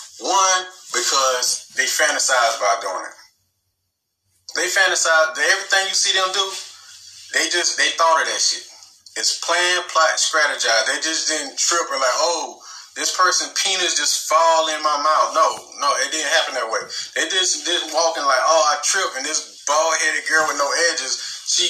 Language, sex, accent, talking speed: English, male, American, 180 wpm